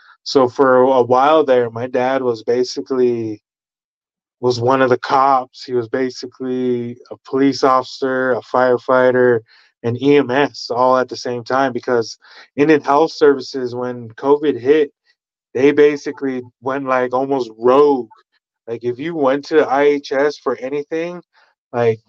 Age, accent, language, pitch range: 20-39, American, English, 120-140 Hz